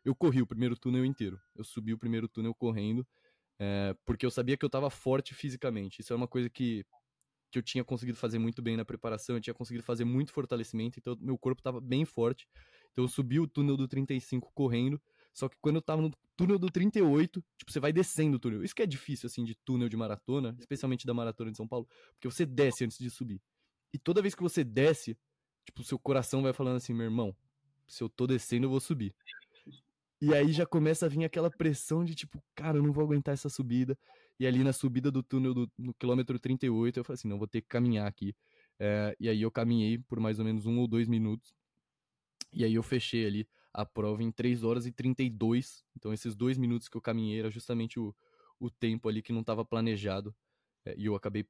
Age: 20-39